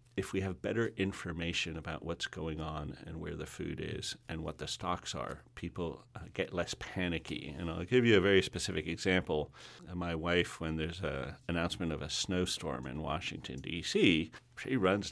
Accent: American